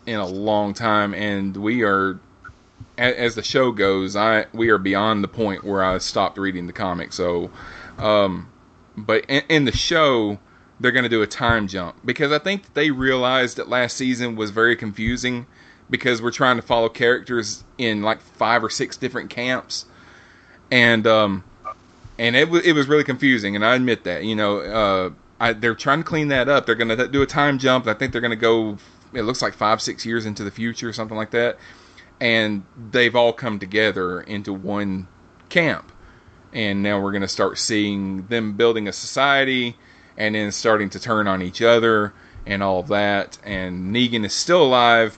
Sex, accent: male, American